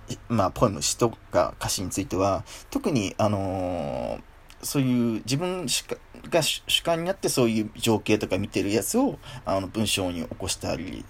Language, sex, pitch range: Japanese, male, 105-140 Hz